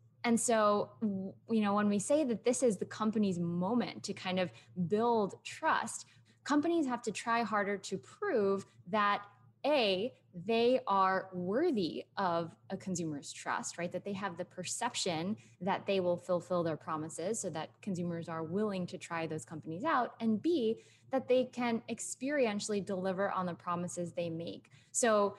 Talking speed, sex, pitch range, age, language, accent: 165 wpm, female, 175-215 Hz, 10-29, English, American